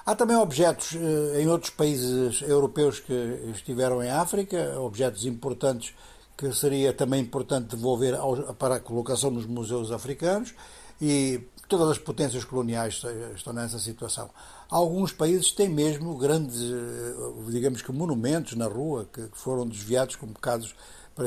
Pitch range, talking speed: 125-160 Hz, 135 wpm